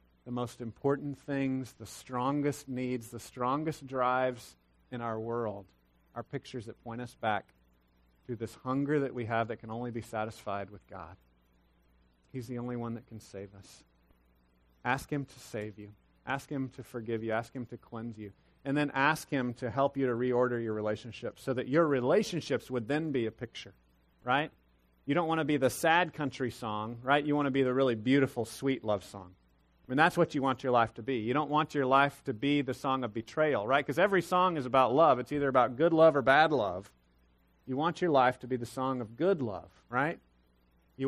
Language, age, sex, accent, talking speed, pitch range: English, 40-59, male, American, 215 wpm, 100-135 Hz